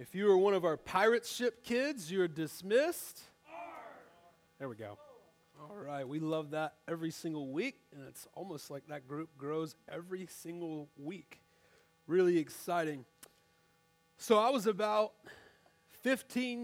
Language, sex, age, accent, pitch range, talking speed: English, male, 30-49, American, 165-215 Hz, 145 wpm